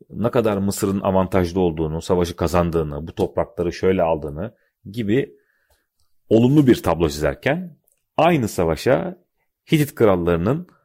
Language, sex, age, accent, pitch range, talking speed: Turkish, male, 40-59, native, 85-110 Hz, 110 wpm